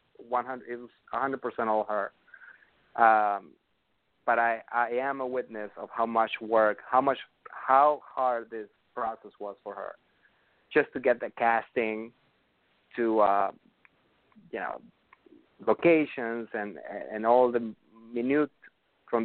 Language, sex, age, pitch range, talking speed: English, male, 30-49, 105-125 Hz, 140 wpm